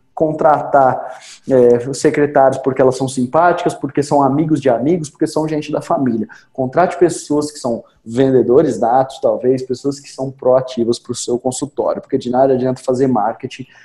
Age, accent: 20-39, Brazilian